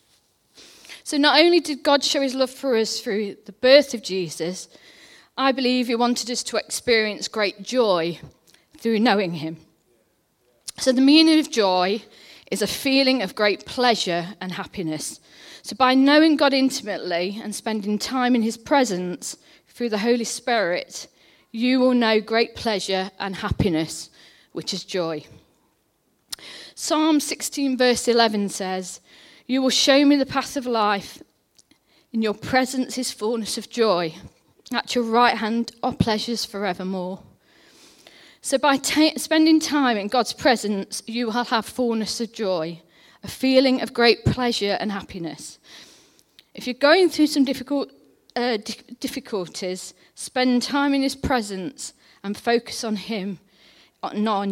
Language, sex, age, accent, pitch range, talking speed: English, female, 40-59, British, 200-260 Hz, 145 wpm